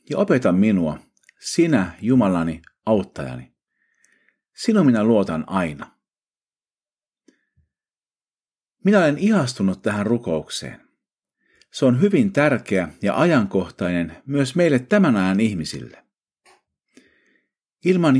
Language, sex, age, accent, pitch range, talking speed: Finnish, male, 50-69, native, 90-140 Hz, 90 wpm